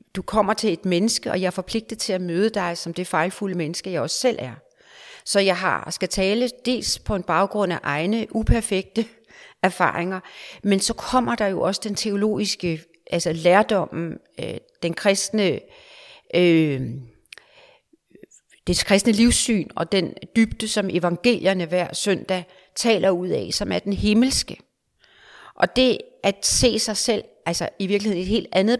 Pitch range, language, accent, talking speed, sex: 180-230 Hz, Danish, native, 160 wpm, female